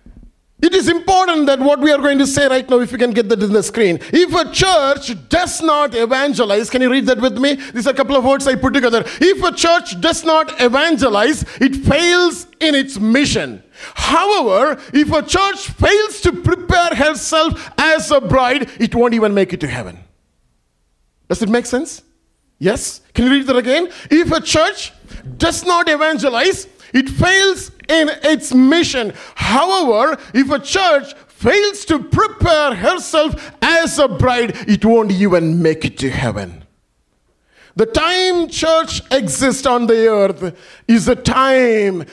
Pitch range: 195-315 Hz